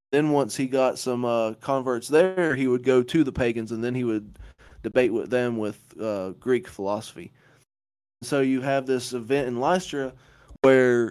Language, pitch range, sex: English, 120-145 Hz, male